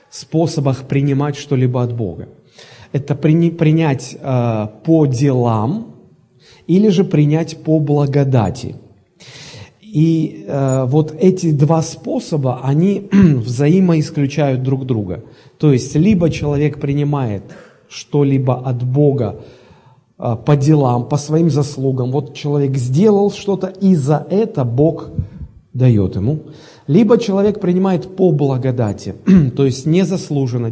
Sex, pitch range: male, 130-165 Hz